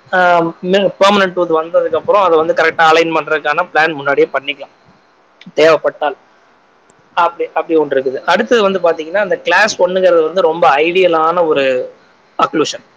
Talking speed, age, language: 125 wpm, 20-39, Tamil